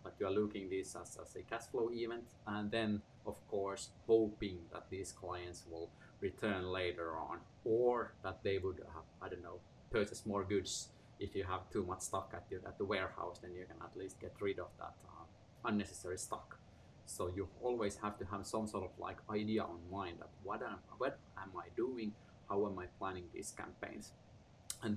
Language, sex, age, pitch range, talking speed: English, male, 30-49, 90-115 Hz, 195 wpm